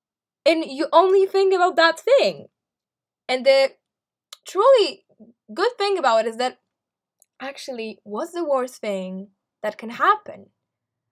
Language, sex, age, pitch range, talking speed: English, female, 10-29, 235-325 Hz, 130 wpm